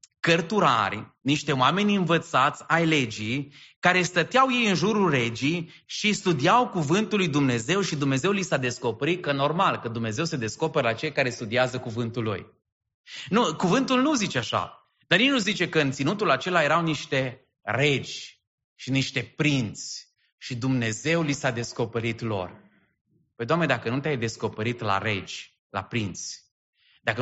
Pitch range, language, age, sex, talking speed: 120-170 Hz, English, 20-39, male, 155 wpm